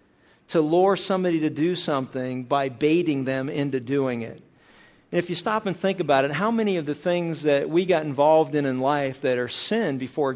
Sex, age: male, 50-69